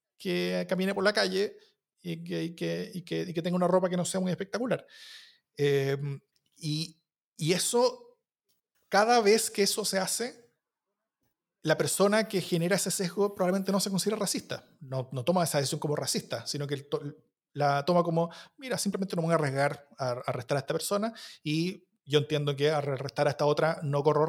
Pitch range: 145-200 Hz